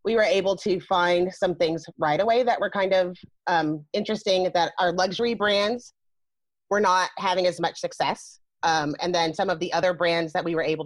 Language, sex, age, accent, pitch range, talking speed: English, female, 30-49, American, 170-205 Hz, 205 wpm